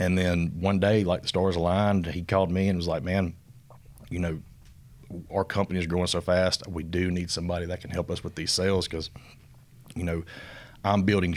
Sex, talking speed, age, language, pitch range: male, 205 wpm, 30-49, English, 85-95 Hz